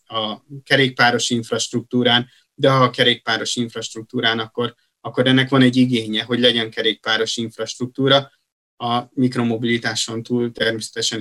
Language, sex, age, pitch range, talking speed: Hungarian, male, 30-49, 115-130 Hz, 120 wpm